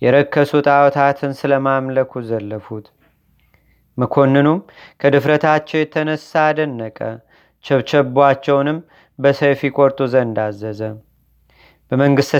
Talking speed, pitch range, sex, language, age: 60 wpm, 135-150 Hz, male, Amharic, 30-49